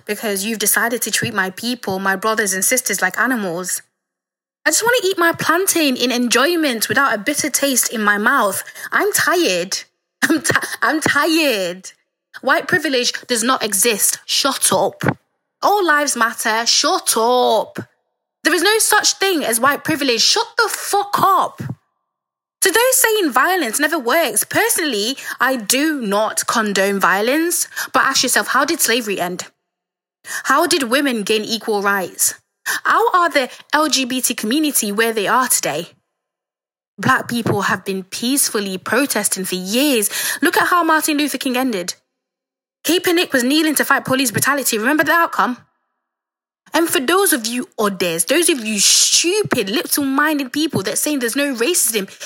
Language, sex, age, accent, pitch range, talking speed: English, female, 20-39, British, 225-320 Hz, 155 wpm